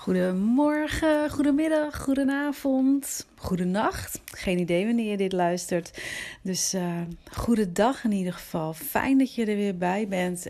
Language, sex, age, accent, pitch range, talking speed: Dutch, female, 30-49, Dutch, 175-230 Hz, 135 wpm